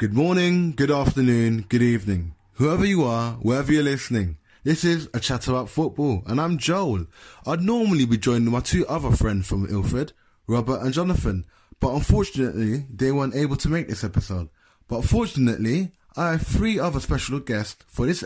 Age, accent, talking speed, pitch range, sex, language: 20-39, British, 175 wpm, 110-155 Hz, male, English